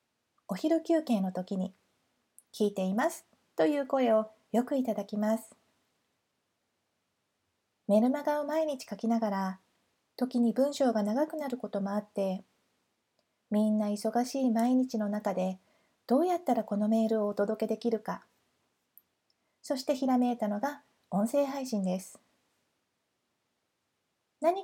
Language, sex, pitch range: Japanese, female, 210-255 Hz